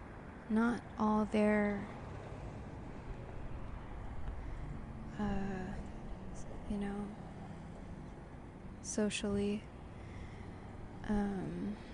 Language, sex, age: English, female, 20-39